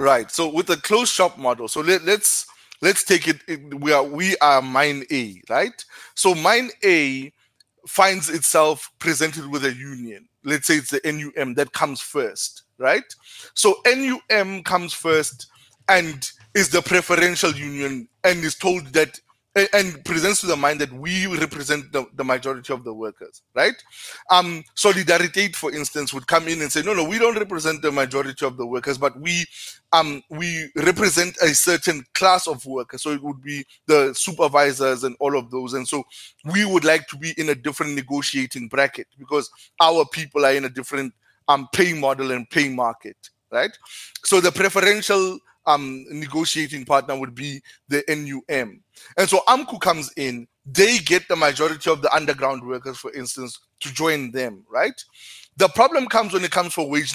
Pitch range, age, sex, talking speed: 135-180 Hz, 20-39, male, 175 wpm